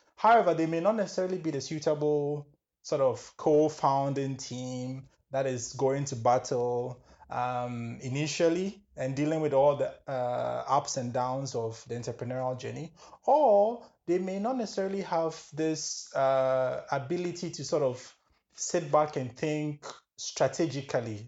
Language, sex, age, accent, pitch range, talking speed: English, male, 20-39, Nigerian, 125-165 Hz, 140 wpm